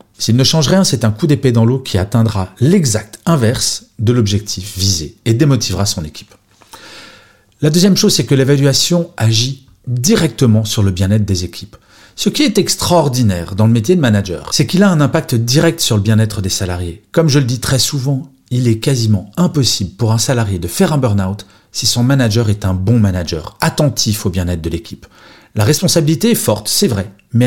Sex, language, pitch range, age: male, French, 105-155 Hz, 40-59